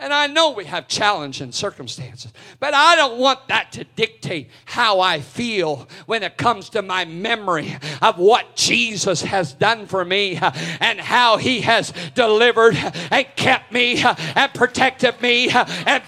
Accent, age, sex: American, 50-69, male